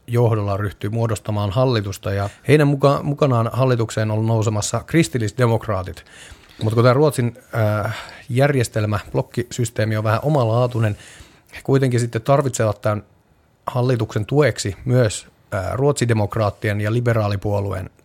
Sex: male